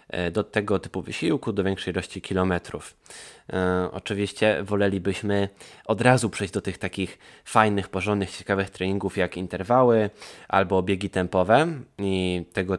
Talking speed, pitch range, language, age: 125 wpm, 95-110 Hz, Polish, 20-39